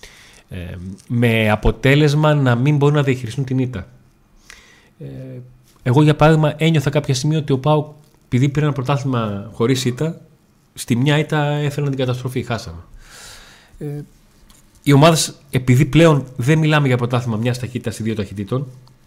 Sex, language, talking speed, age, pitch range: male, Greek, 150 wpm, 30-49, 110-145 Hz